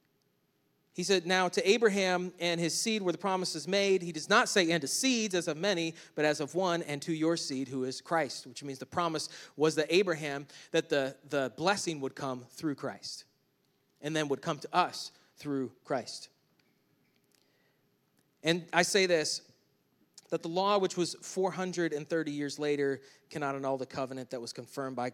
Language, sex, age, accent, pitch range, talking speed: English, male, 30-49, American, 135-170 Hz, 180 wpm